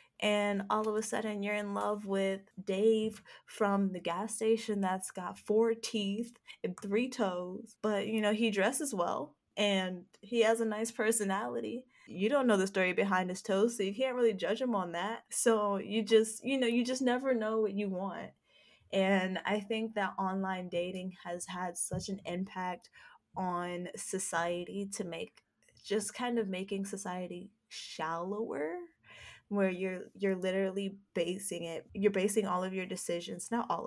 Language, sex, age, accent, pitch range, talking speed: English, female, 10-29, American, 180-210 Hz, 170 wpm